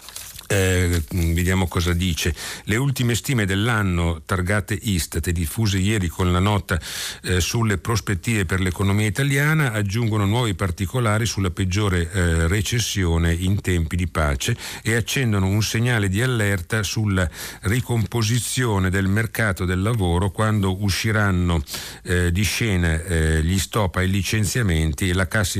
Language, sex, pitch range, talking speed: Italian, male, 90-110 Hz, 135 wpm